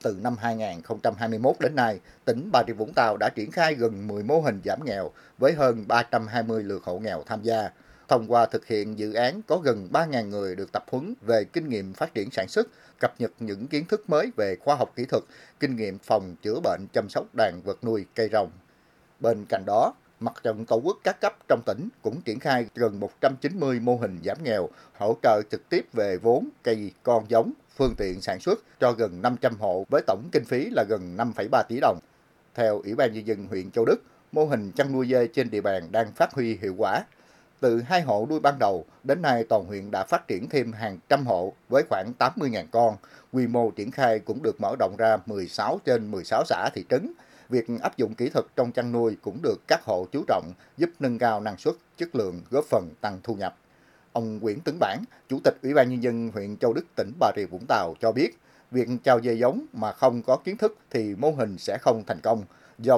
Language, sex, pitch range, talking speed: Vietnamese, male, 110-130 Hz, 225 wpm